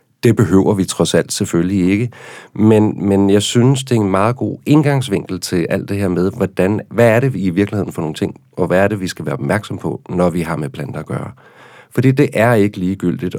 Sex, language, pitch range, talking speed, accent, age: male, Danish, 85-105 Hz, 240 wpm, native, 40-59